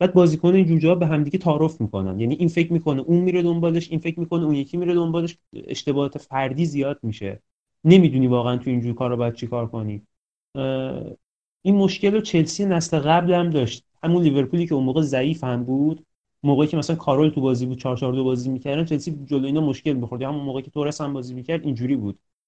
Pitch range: 130-170 Hz